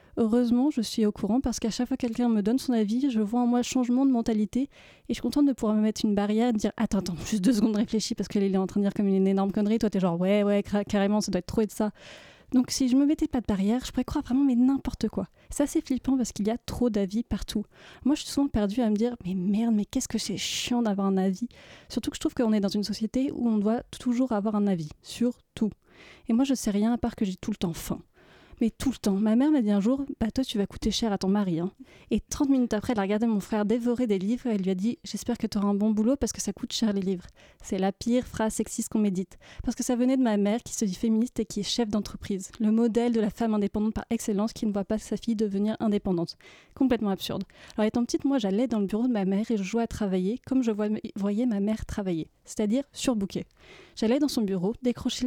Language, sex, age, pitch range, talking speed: French, female, 30-49, 205-245 Hz, 285 wpm